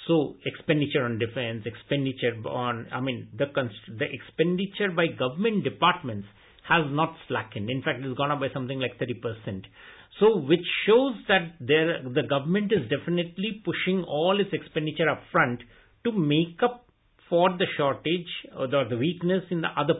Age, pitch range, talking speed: 60-79, 130-180 Hz, 165 wpm